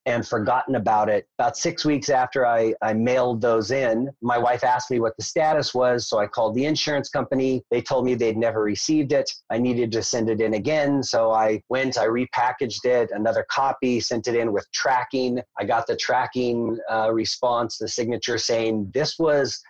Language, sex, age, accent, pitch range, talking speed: English, male, 30-49, American, 115-135 Hz, 200 wpm